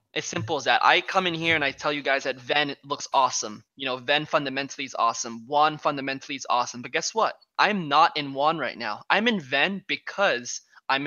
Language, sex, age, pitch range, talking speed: English, male, 20-39, 135-155 Hz, 220 wpm